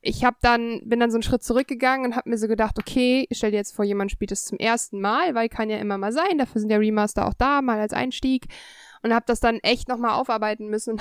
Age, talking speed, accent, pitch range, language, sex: 10-29, 275 wpm, German, 225-300 Hz, German, female